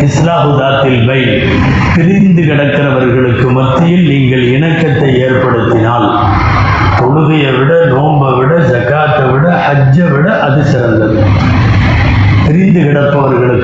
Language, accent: Tamil, native